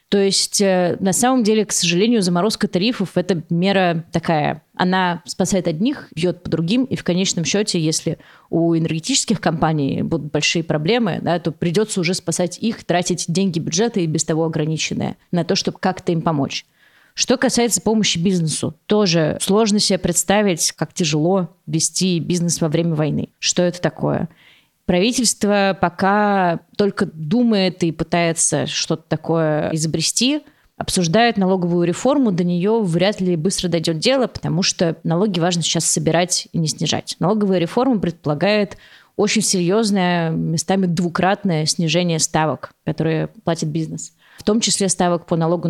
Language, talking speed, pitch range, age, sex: Russian, 150 wpm, 165-205 Hz, 20-39, female